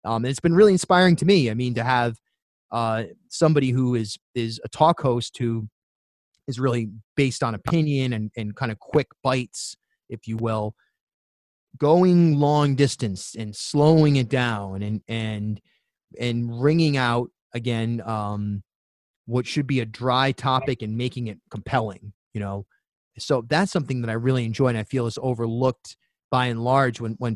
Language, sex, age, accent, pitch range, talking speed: English, male, 30-49, American, 110-135 Hz, 170 wpm